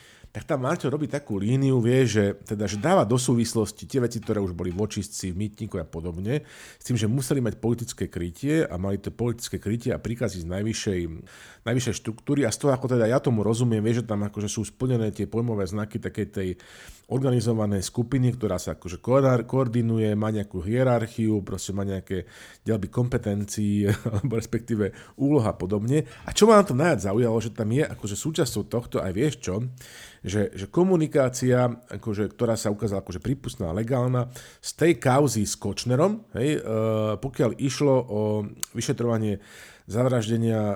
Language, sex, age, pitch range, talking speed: Slovak, male, 50-69, 100-125 Hz, 170 wpm